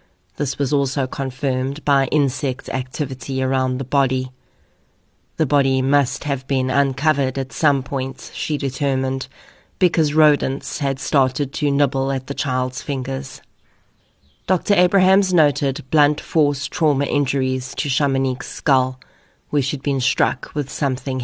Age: 30-49